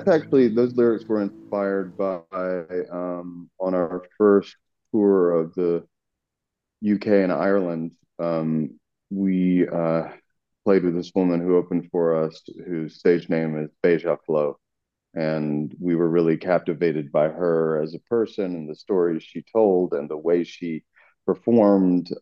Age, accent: 40-59, American